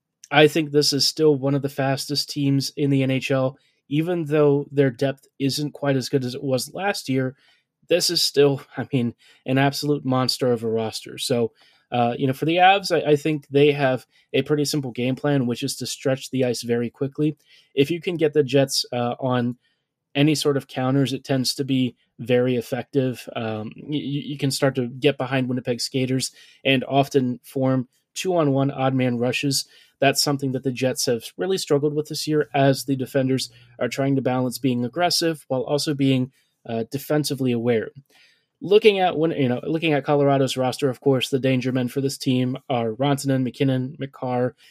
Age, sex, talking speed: 20-39, male, 195 wpm